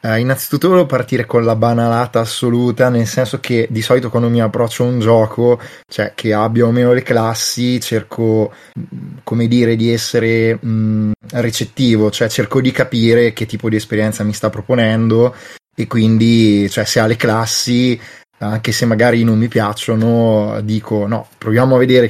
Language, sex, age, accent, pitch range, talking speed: Italian, male, 20-39, native, 105-120 Hz, 170 wpm